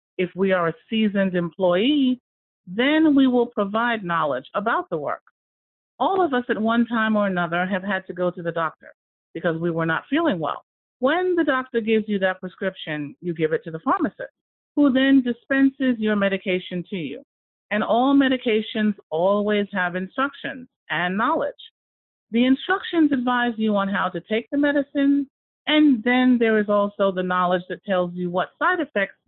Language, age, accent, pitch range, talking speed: English, 50-69, American, 190-260 Hz, 175 wpm